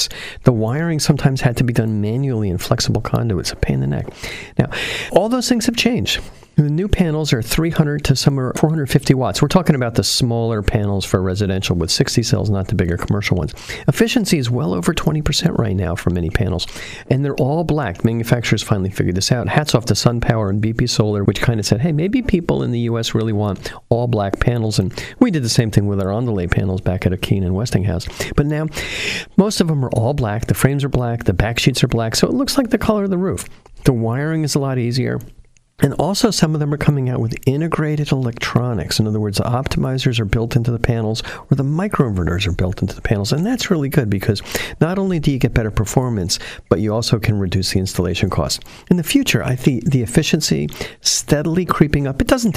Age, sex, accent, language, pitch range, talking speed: 50-69, male, American, English, 110-150 Hz, 225 wpm